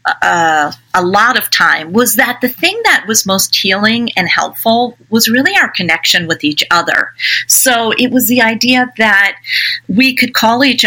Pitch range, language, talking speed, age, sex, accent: 185-245 Hz, English, 175 wpm, 40-59, female, American